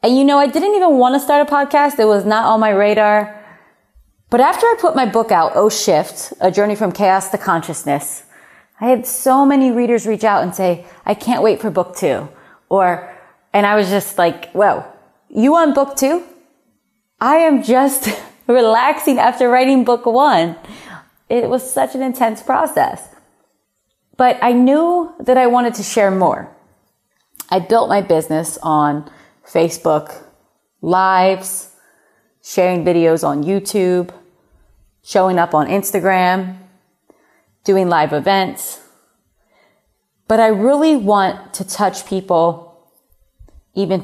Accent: American